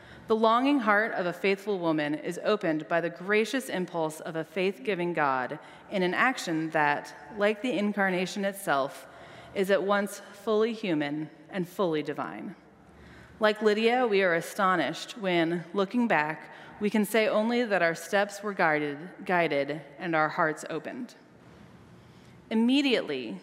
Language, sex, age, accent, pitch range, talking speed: English, female, 30-49, American, 165-215 Hz, 145 wpm